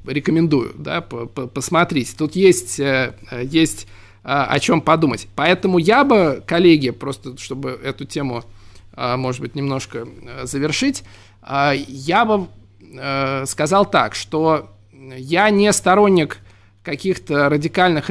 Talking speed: 105 wpm